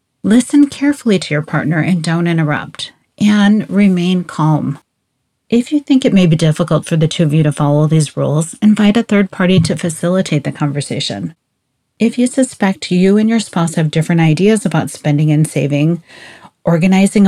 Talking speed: 175 wpm